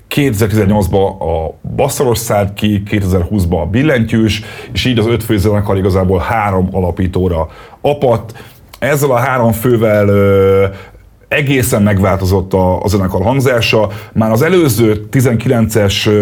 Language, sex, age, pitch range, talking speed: Hungarian, male, 30-49, 100-120 Hz, 120 wpm